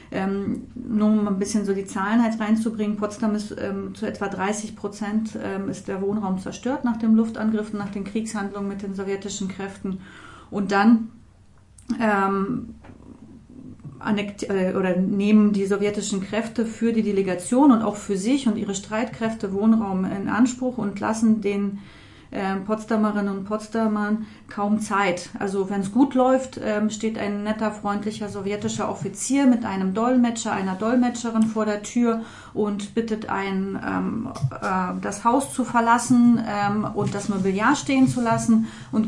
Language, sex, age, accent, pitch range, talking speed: German, female, 40-59, German, 195-225 Hz, 155 wpm